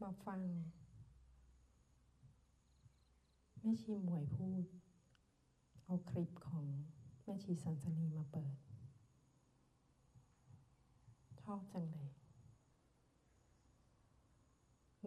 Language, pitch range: Thai, 125-180 Hz